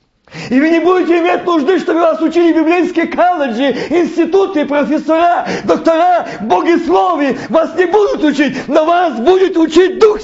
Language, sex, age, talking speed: Russian, male, 50-69, 145 wpm